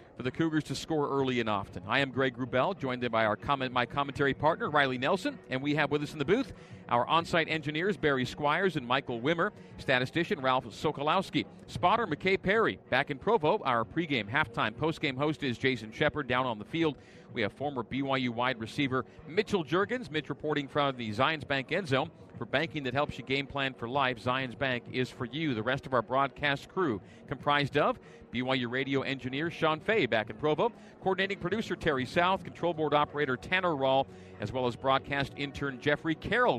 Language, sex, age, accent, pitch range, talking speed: English, male, 40-59, American, 125-150 Hz, 195 wpm